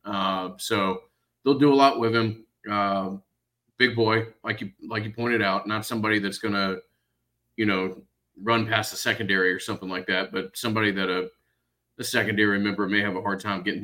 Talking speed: 195 wpm